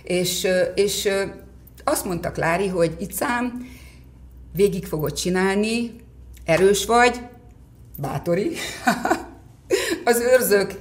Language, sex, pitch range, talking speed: Hungarian, female, 150-200 Hz, 85 wpm